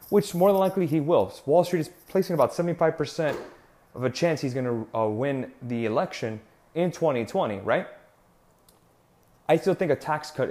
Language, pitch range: English, 120-155 Hz